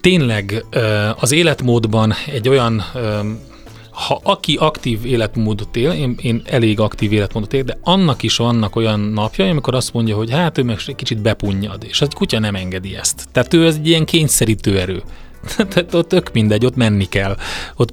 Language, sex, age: Hungarian, male, 30-49